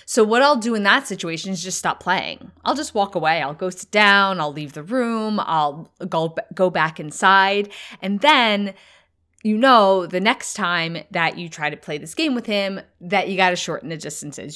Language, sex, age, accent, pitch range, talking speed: English, female, 20-39, American, 165-220 Hz, 205 wpm